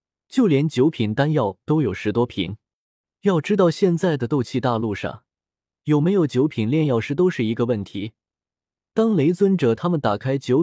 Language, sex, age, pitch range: Chinese, male, 20-39, 115-170 Hz